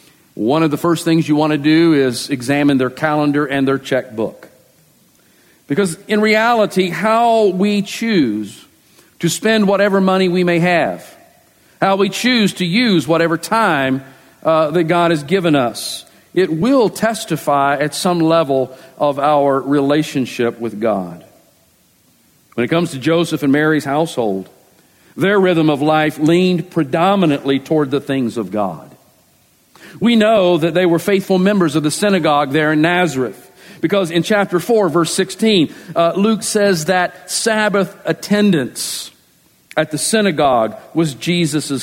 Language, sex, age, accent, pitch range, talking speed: English, male, 50-69, American, 150-195 Hz, 145 wpm